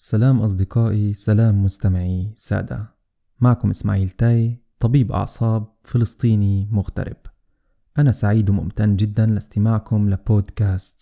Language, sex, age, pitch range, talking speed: Arabic, male, 20-39, 100-120 Hz, 100 wpm